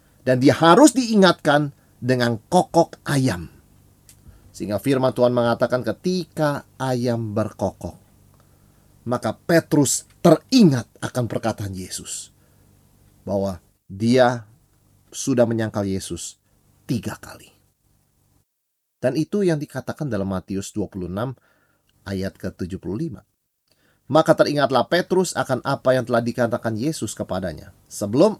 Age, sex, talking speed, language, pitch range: 30-49, male, 100 wpm, Indonesian, 100-145 Hz